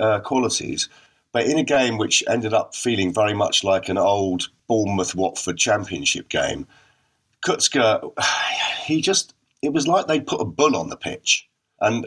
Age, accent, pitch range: 40-59, British, 90-130 Hz